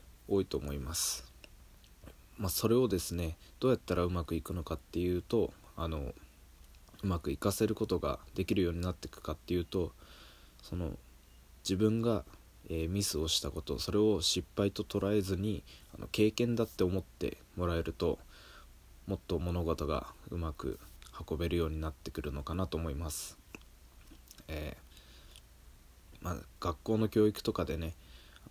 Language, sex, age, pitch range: Japanese, male, 20-39, 75-95 Hz